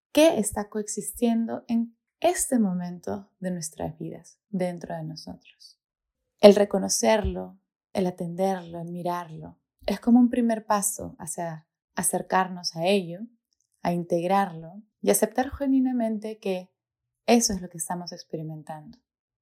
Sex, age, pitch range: female, 20-39, 180-225 Hz